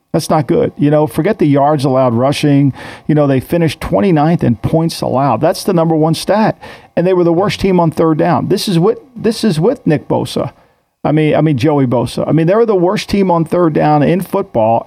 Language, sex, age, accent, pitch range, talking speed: English, male, 50-69, American, 140-165 Hz, 230 wpm